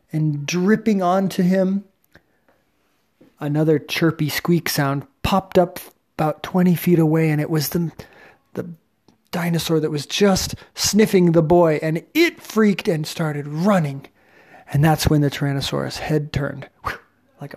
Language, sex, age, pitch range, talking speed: English, male, 30-49, 140-170 Hz, 135 wpm